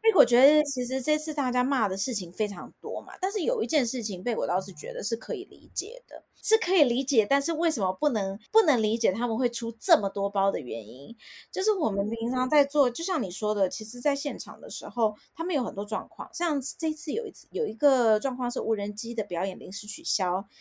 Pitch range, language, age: 210-305 Hz, Chinese, 20-39